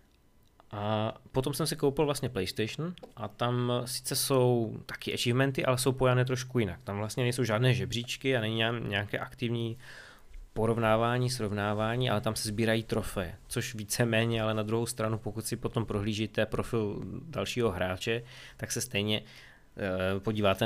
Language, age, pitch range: Czech, 20-39, 105-130 Hz